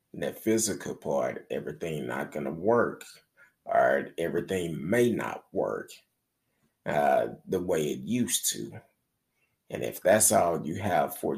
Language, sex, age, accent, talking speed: English, male, 30-49, American, 140 wpm